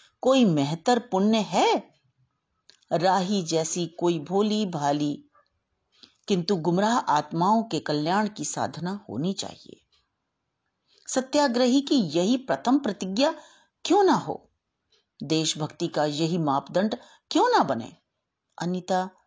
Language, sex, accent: Hindi, female, native